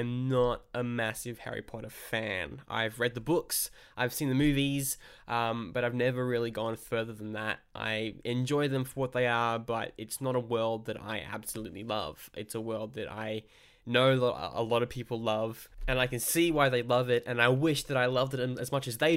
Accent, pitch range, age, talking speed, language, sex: Australian, 110-130 Hz, 10-29, 220 wpm, English, male